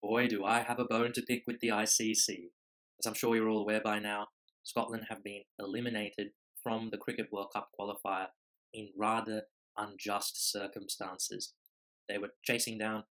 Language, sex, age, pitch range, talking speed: English, male, 20-39, 105-115 Hz, 170 wpm